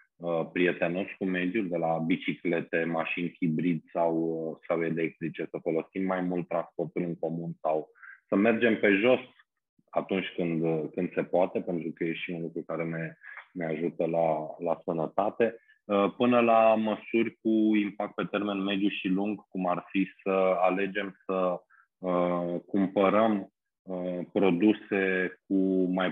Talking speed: 140 wpm